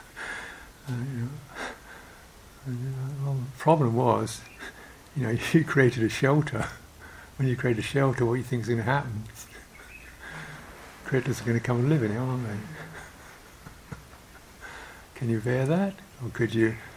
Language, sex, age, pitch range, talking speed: English, male, 60-79, 115-130 Hz, 155 wpm